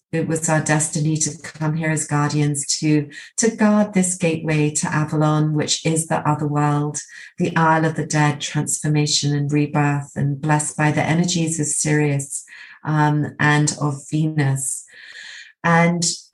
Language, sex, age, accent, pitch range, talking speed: English, female, 40-59, British, 150-170 Hz, 150 wpm